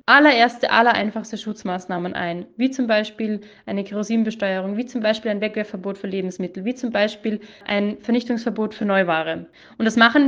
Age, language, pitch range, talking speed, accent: 20-39, German, 195-245 Hz, 160 wpm, German